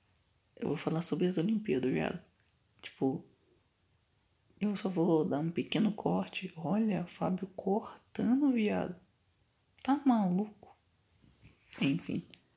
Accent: Brazilian